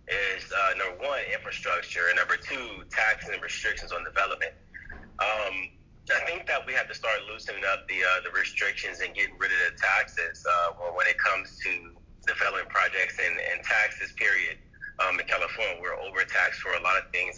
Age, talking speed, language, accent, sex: 30-49, 185 wpm, English, American, male